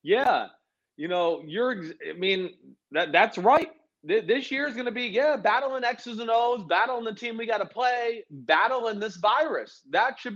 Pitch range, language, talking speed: 190-250 Hz, English, 185 wpm